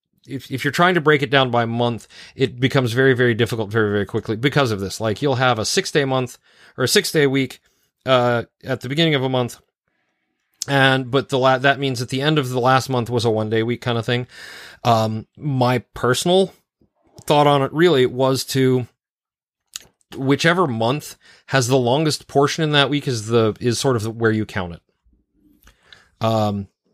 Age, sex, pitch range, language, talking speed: 30-49, male, 110-135 Hz, English, 195 wpm